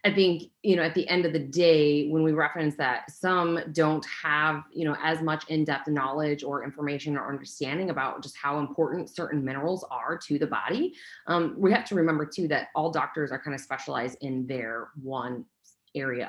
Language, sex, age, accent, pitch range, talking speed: English, female, 30-49, American, 145-180 Hz, 200 wpm